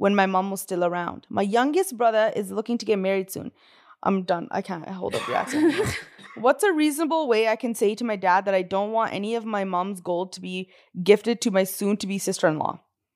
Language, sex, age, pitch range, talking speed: English, female, 20-39, 180-220 Hz, 225 wpm